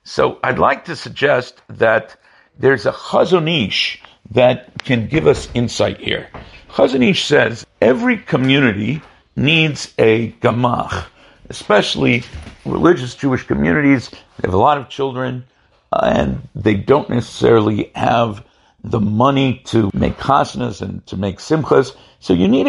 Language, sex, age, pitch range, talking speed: English, male, 60-79, 110-145 Hz, 130 wpm